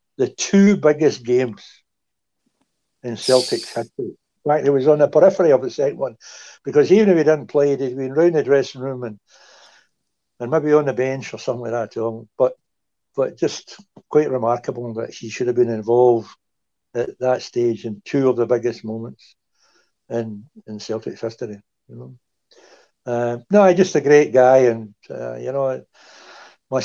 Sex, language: male, English